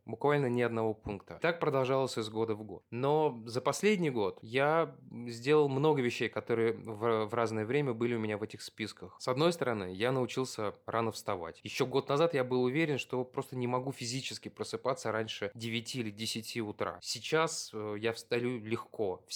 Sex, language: male, Russian